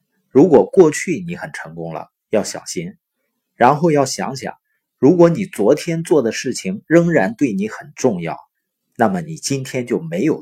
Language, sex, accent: Chinese, male, native